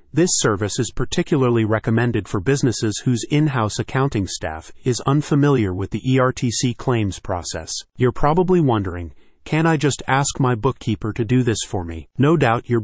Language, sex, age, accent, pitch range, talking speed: English, male, 30-49, American, 110-135 Hz, 165 wpm